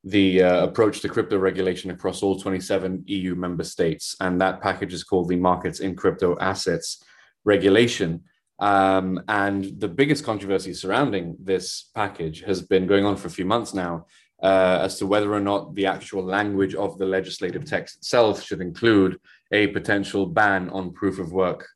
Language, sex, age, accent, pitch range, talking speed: English, male, 20-39, British, 90-100 Hz, 175 wpm